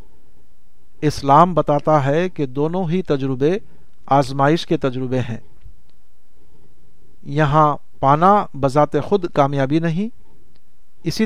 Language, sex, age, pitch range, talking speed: Urdu, male, 50-69, 140-180 Hz, 95 wpm